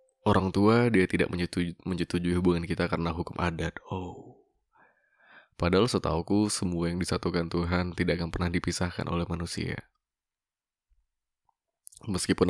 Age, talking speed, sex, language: 20-39, 120 wpm, male, Indonesian